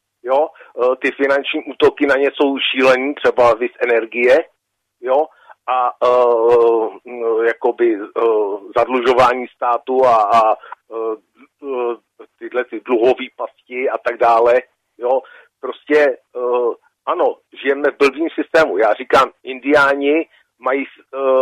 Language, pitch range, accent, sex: Czech, 115-155 Hz, native, male